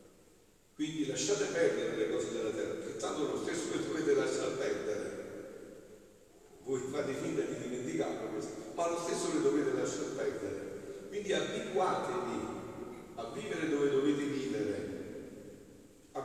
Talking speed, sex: 135 wpm, male